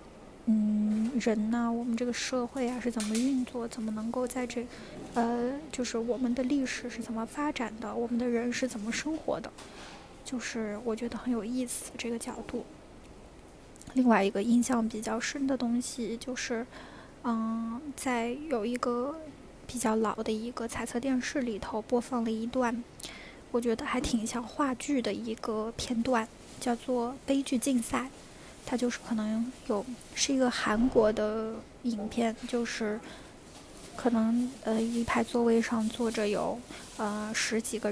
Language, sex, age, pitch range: Chinese, female, 10-29, 225-250 Hz